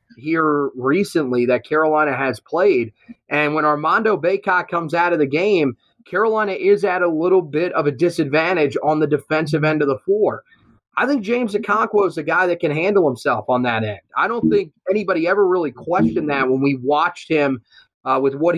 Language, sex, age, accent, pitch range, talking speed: English, male, 30-49, American, 140-185 Hz, 195 wpm